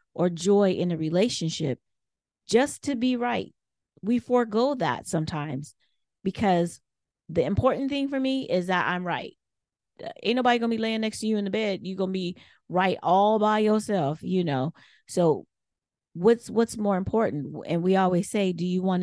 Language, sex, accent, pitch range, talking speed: English, female, American, 160-205 Hz, 175 wpm